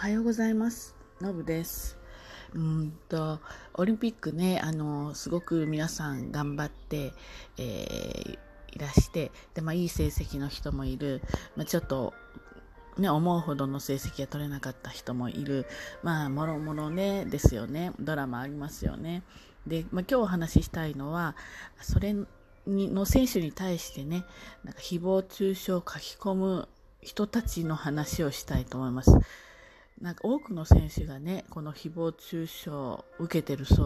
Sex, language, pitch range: female, Japanese, 140-190 Hz